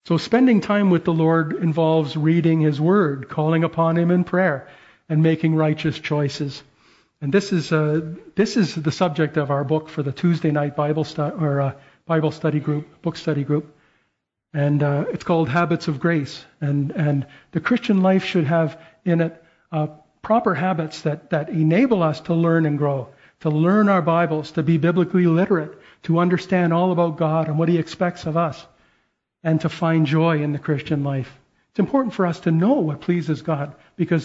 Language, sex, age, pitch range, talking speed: English, male, 50-69, 155-180 Hz, 190 wpm